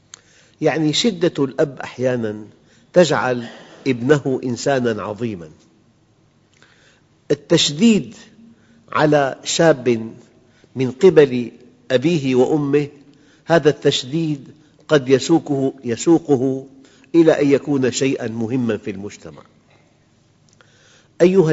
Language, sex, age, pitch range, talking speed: Arabic, male, 50-69, 120-155 Hz, 80 wpm